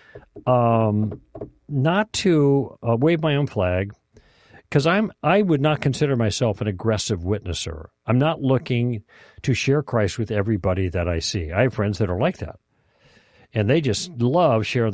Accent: American